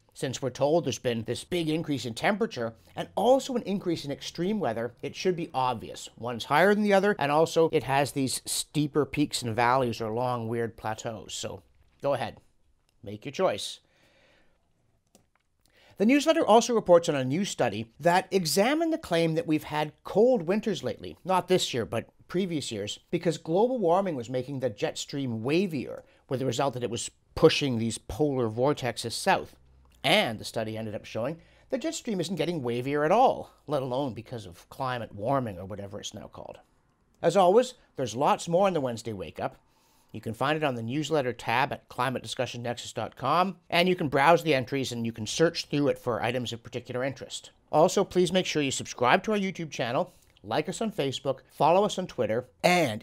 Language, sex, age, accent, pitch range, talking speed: English, male, 50-69, American, 115-170 Hz, 190 wpm